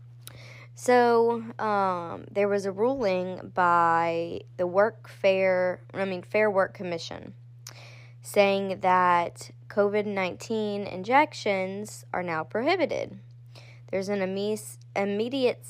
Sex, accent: female, American